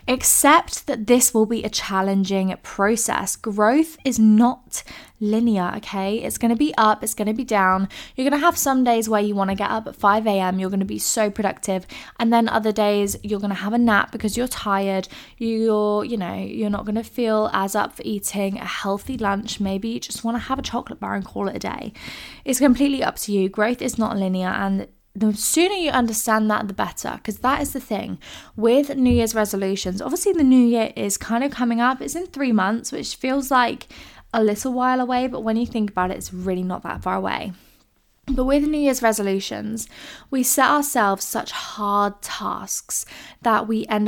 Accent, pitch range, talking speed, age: British, 195-245 Hz, 215 wpm, 20-39